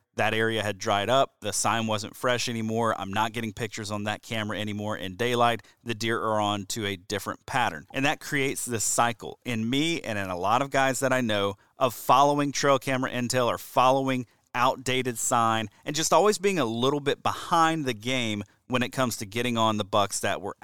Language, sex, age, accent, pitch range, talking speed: English, male, 30-49, American, 110-135 Hz, 210 wpm